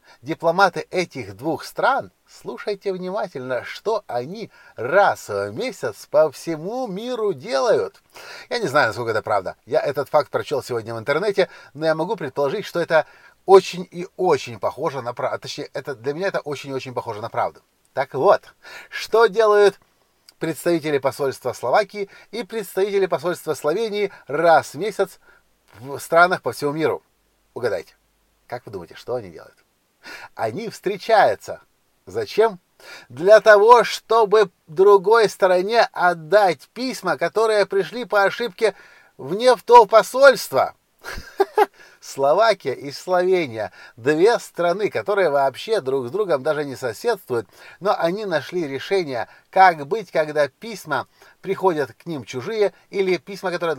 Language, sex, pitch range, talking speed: Russian, male, 155-215 Hz, 135 wpm